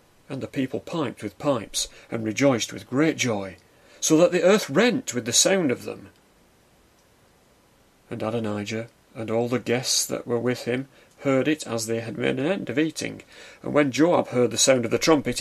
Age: 40-59